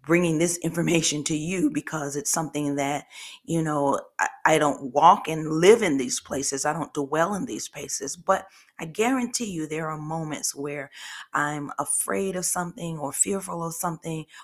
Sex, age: female, 40-59